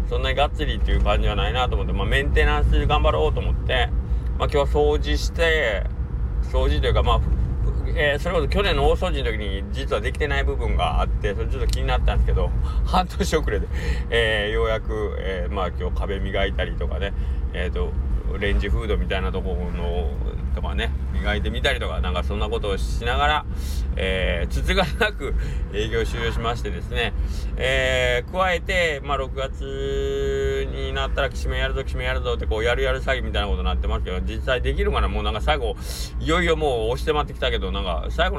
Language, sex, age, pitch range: Japanese, male, 20-39, 65-115 Hz